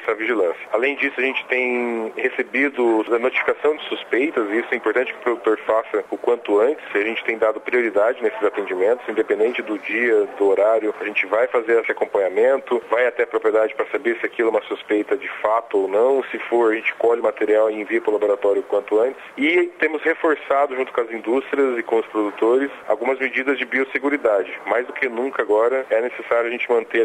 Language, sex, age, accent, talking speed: Portuguese, male, 40-59, Brazilian, 215 wpm